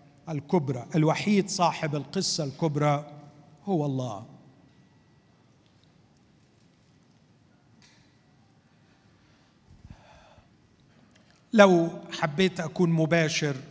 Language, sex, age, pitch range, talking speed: Arabic, male, 50-69, 155-190 Hz, 50 wpm